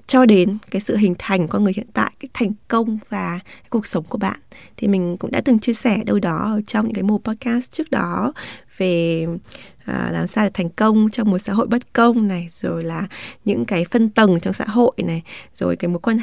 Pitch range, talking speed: 180-235 Hz, 230 wpm